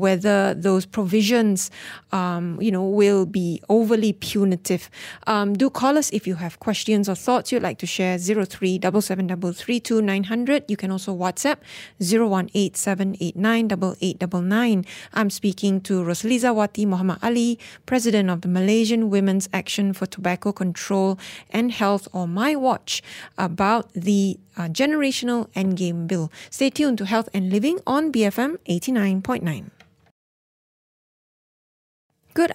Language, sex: English, female